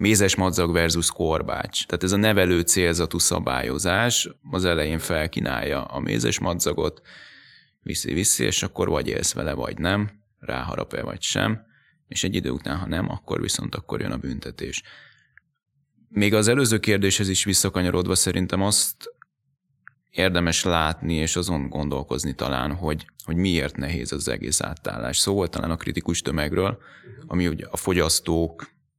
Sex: male